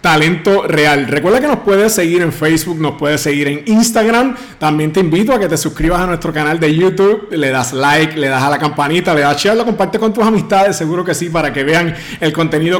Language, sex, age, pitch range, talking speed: Spanish, male, 30-49, 155-210 Hz, 235 wpm